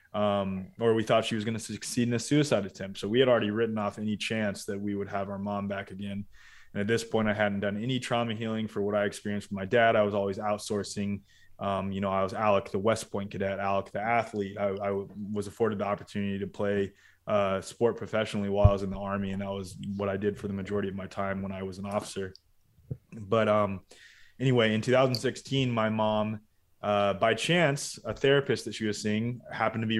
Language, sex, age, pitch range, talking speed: English, male, 20-39, 100-120 Hz, 230 wpm